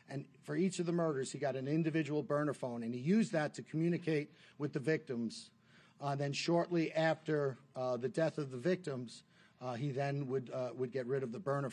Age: 50-69